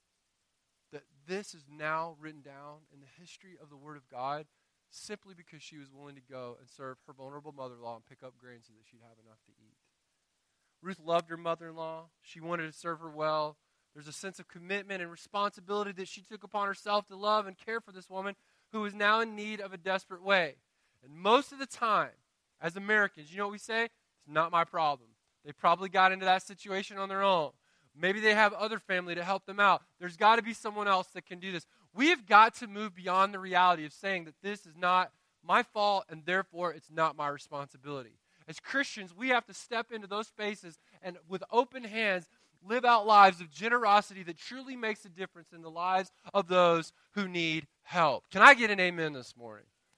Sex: male